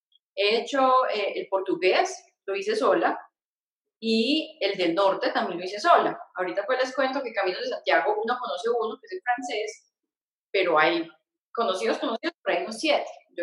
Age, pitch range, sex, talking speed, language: 20-39, 220-310 Hz, female, 170 wpm, Spanish